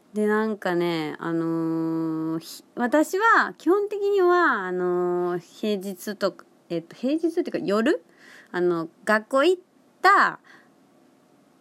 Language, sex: Japanese, female